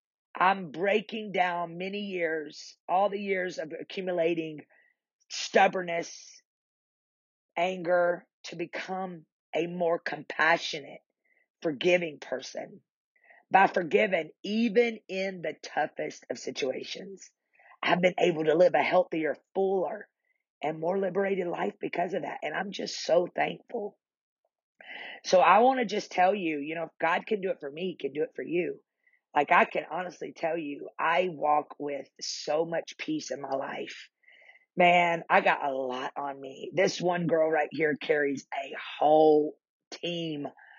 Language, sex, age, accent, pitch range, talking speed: English, female, 40-59, American, 155-195 Hz, 145 wpm